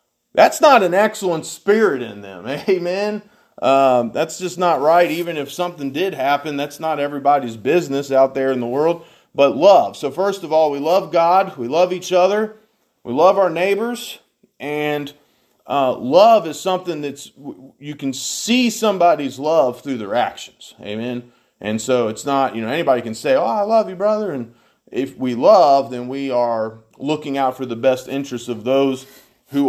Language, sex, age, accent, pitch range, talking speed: English, male, 30-49, American, 125-180 Hz, 180 wpm